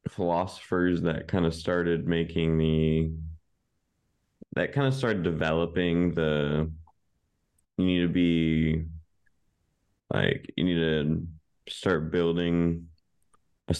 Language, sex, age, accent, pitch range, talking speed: English, male, 20-39, American, 80-95 Hz, 105 wpm